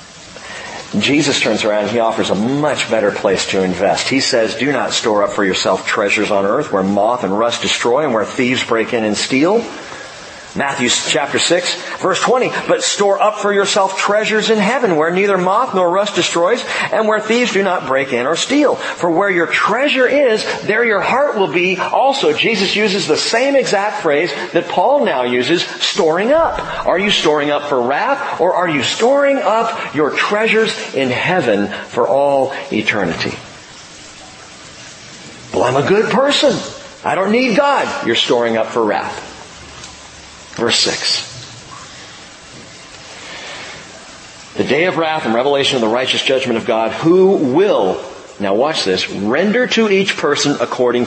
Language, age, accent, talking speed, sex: English, 40-59, American, 165 wpm, male